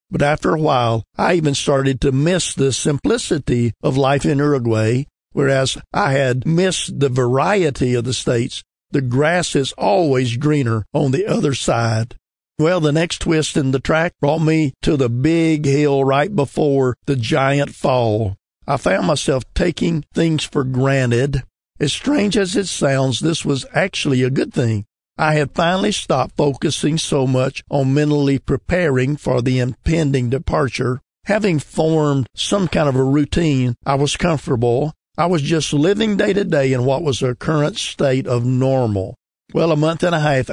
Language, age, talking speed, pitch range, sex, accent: English, 50-69, 170 wpm, 130-155 Hz, male, American